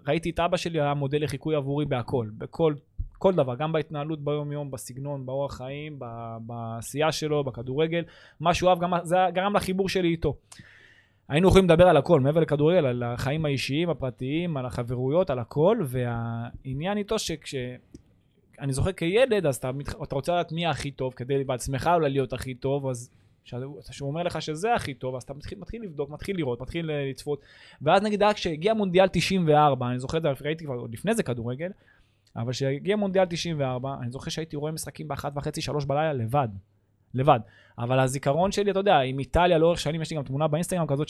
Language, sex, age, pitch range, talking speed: Hebrew, male, 20-39, 130-170 Hz, 185 wpm